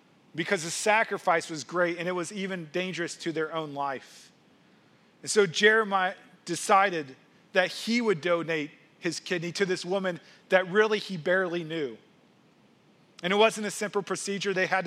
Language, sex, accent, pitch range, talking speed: English, male, American, 165-200 Hz, 160 wpm